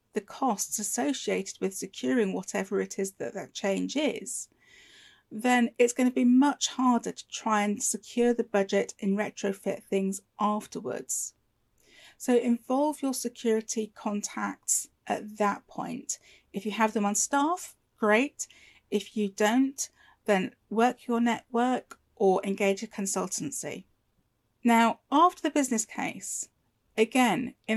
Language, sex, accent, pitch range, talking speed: English, female, British, 205-250 Hz, 135 wpm